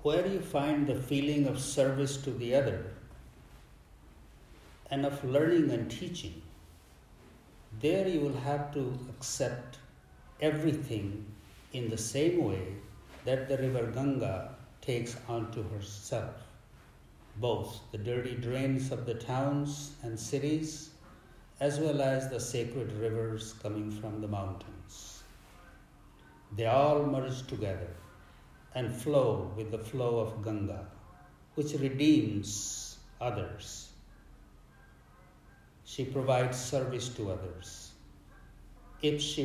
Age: 60-79